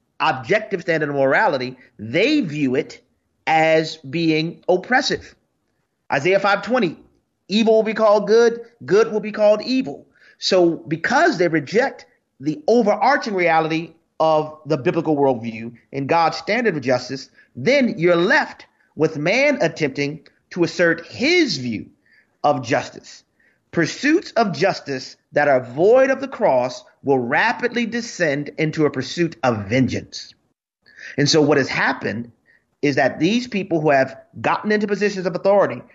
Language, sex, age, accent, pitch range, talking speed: English, male, 30-49, American, 150-225 Hz, 140 wpm